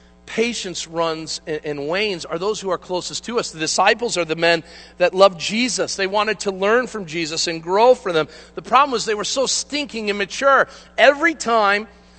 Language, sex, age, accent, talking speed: English, male, 40-59, American, 195 wpm